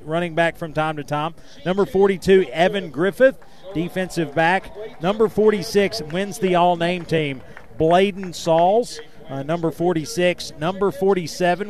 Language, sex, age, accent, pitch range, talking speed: English, male, 40-59, American, 150-190 Hz, 135 wpm